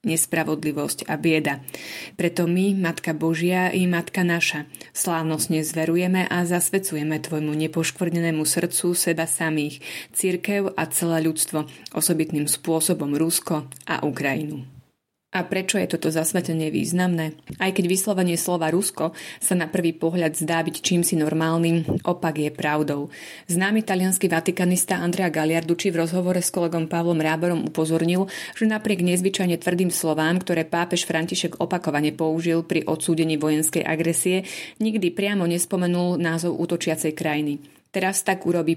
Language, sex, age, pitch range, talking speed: Slovak, female, 30-49, 160-180 Hz, 130 wpm